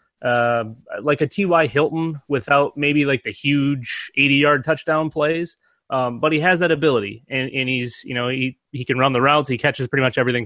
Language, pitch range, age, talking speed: English, 120-145 Hz, 20-39, 205 wpm